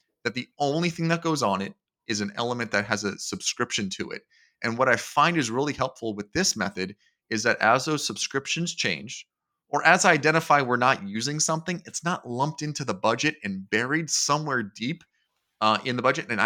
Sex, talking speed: male, 205 wpm